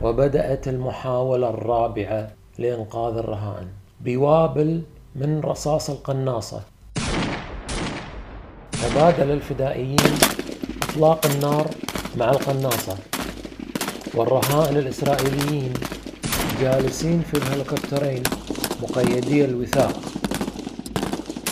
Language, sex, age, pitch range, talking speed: Arabic, male, 40-59, 130-160 Hz, 60 wpm